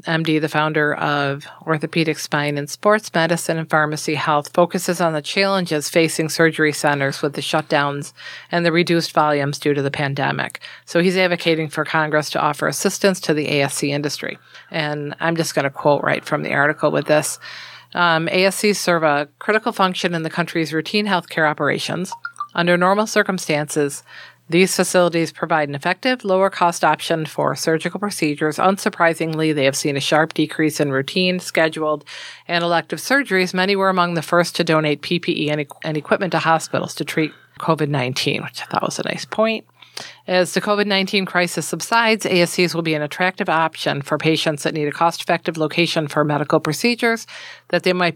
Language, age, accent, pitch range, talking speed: English, 40-59, American, 150-180 Hz, 175 wpm